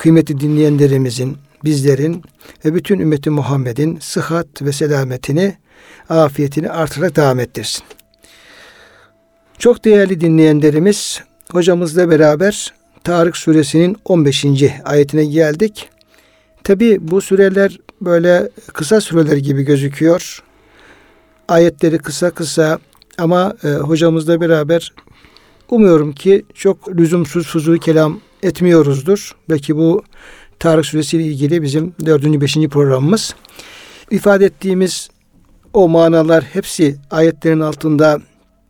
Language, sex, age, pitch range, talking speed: Turkish, male, 60-79, 150-175 Hz, 95 wpm